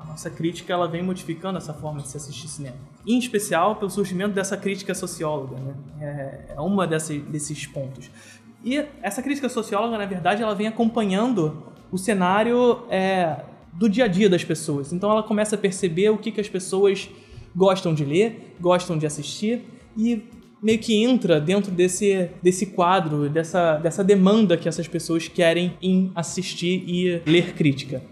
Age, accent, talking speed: 20-39, Brazilian, 160 wpm